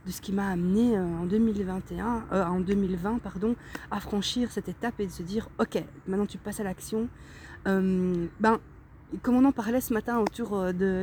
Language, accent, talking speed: French, French, 195 wpm